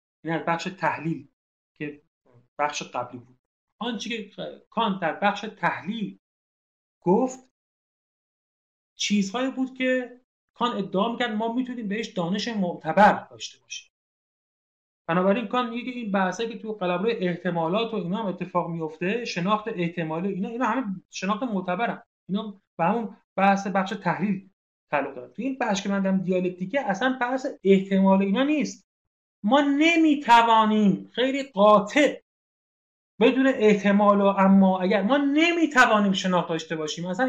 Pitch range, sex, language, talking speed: 180-245 Hz, male, Persian, 135 wpm